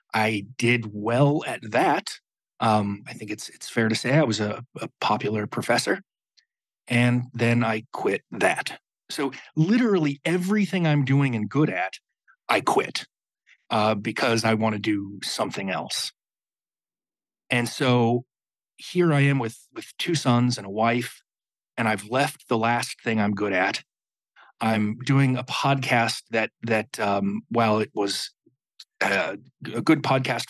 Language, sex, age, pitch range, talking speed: English, male, 40-59, 110-140 Hz, 150 wpm